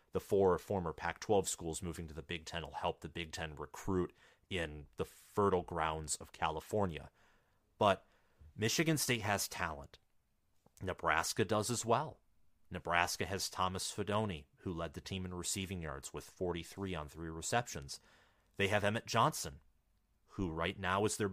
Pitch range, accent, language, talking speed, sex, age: 90-115 Hz, American, English, 160 wpm, male, 30-49